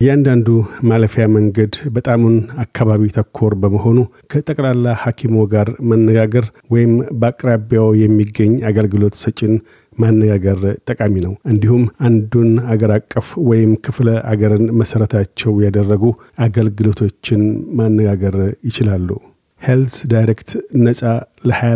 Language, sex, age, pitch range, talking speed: Amharic, male, 50-69, 105-120 Hz, 90 wpm